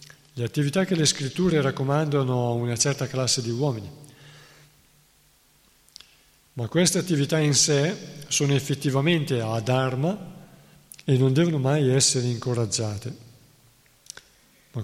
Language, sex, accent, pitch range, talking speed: Italian, male, native, 120-145 Hz, 115 wpm